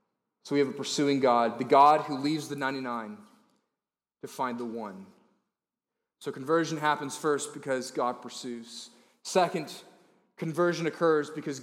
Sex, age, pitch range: male, 30-49, 135-185 Hz